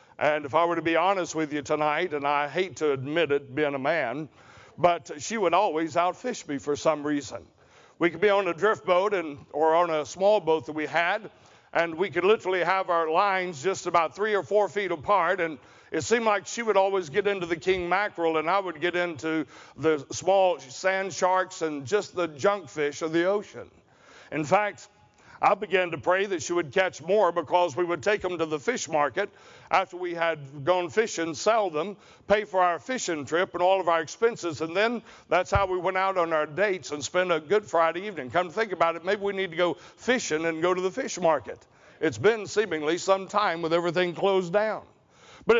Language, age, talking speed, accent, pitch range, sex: English, 60-79, 220 wpm, American, 160-200 Hz, male